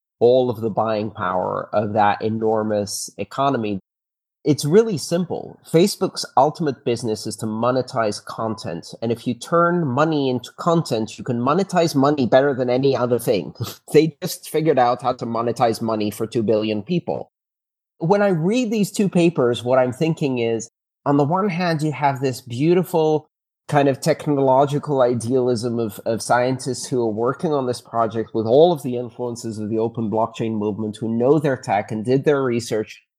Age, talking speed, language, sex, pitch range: 30-49, 175 wpm, English, male, 115-145 Hz